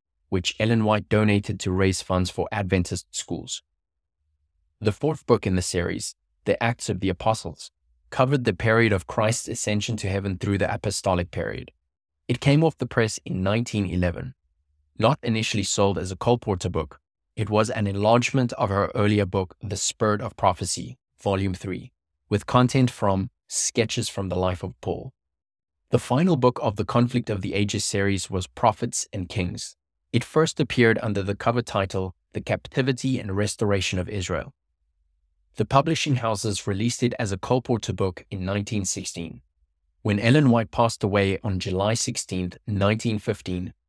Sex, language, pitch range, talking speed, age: male, English, 90-115 Hz, 160 wpm, 20-39